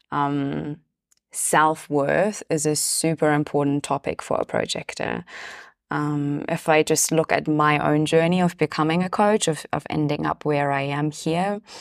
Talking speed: 160 wpm